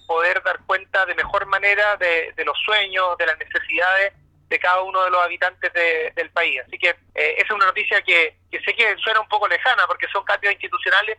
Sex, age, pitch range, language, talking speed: male, 30-49, 170-205 Hz, Spanish, 220 wpm